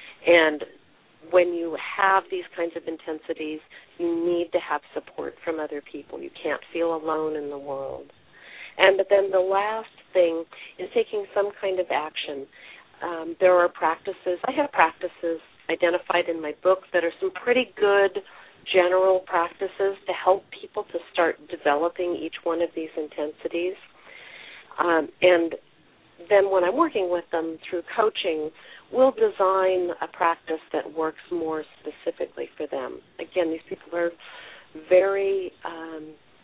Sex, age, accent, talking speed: female, 40-59, American, 150 wpm